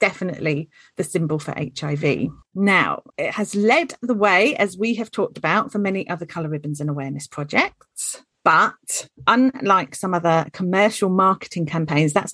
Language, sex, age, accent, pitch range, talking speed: English, female, 40-59, British, 155-195 Hz, 155 wpm